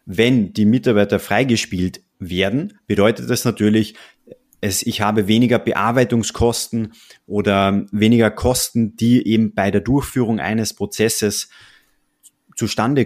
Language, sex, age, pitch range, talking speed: German, male, 30-49, 100-115 Hz, 105 wpm